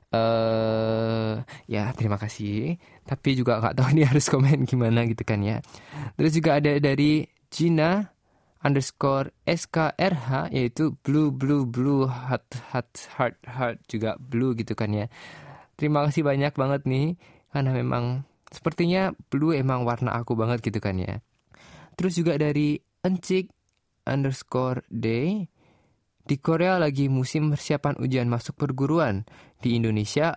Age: 20-39